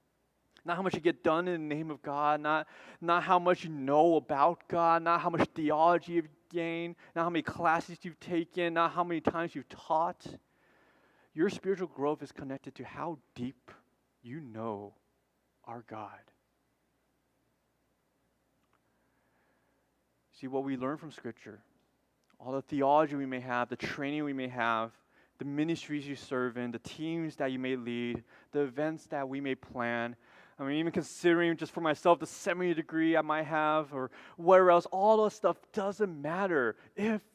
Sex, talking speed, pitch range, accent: male, 170 wpm, 130-170 Hz, American